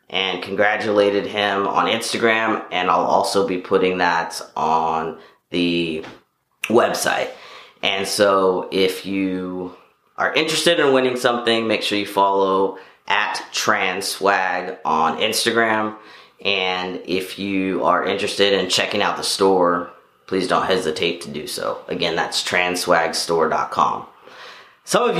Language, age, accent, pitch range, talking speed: English, 30-49, American, 95-140 Hz, 125 wpm